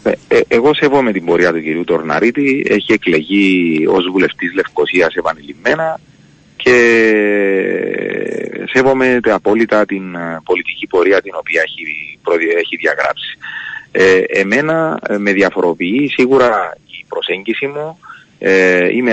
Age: 30-49